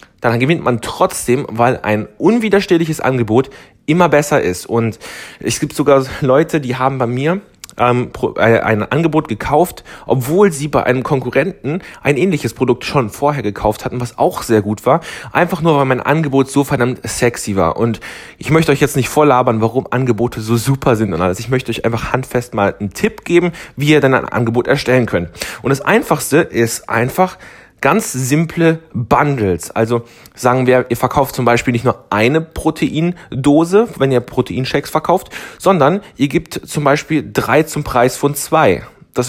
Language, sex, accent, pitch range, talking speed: German, male, German, 115-150 Hz, 175 wpm